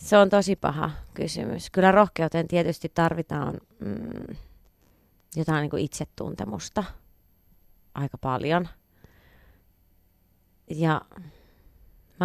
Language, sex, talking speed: Finnish, female, 85 wpm